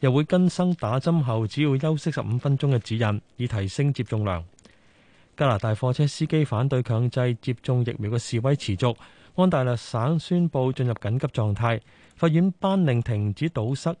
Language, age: Chinese, 20-39